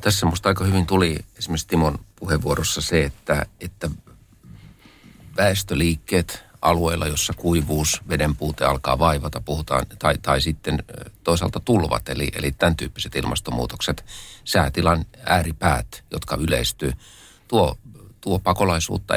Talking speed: 115 wpm